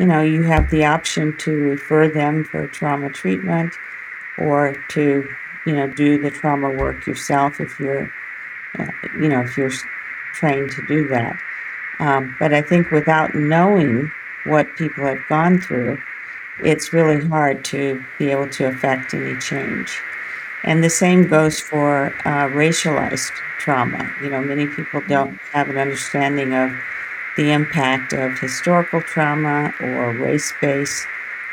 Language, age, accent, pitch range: English, 50-69, American, 135-155 Hz